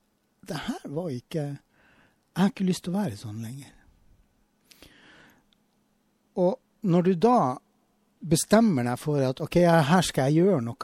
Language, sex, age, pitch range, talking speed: English, male, 60-79, 120-175 Hz, 135 wpm